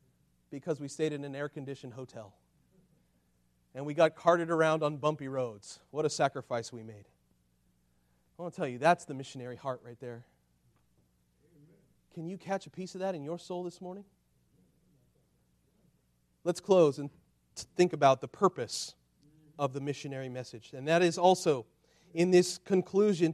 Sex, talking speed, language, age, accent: male, 155 wpm, English, 40-59, American